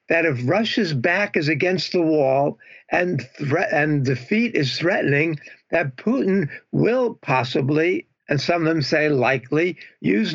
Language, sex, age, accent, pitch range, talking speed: English, male, 60-79, American, 155-210 Hz, 145 wpm